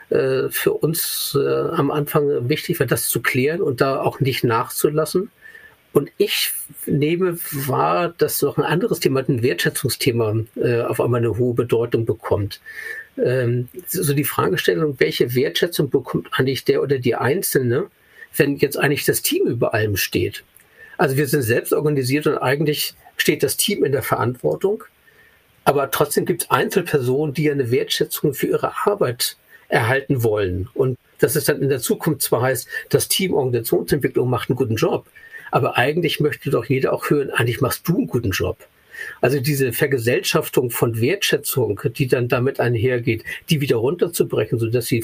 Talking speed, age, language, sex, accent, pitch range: 165 wpm, 50-69, German, male, German, 120-185 Hz